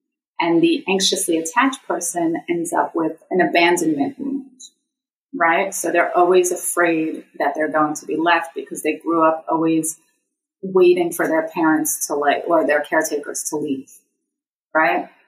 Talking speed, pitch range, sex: 155 wpm, 160-260 Hz, female